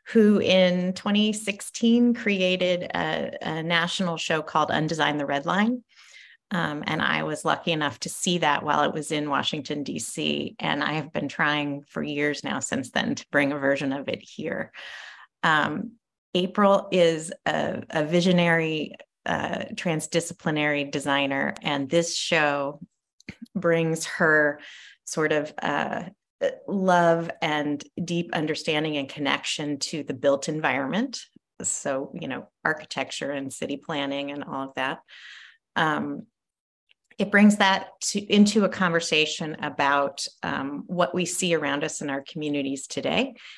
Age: 30-49